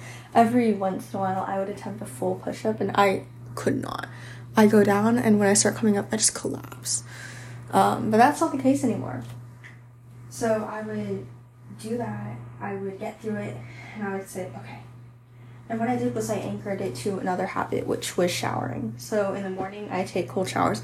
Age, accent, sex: 10-29, American, female